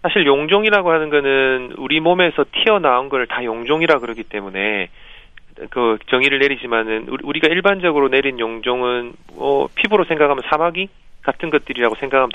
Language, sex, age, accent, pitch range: Korean, male, 40-59, native, 120-160 Hz